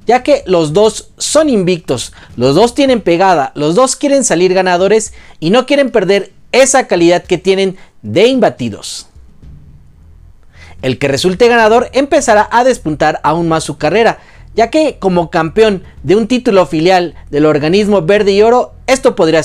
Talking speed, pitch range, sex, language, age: 155 wpm, 150-235 Hz, male, Spanish, 40-59